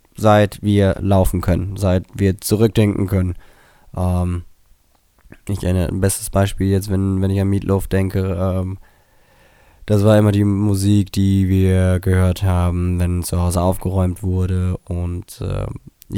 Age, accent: 20-39, German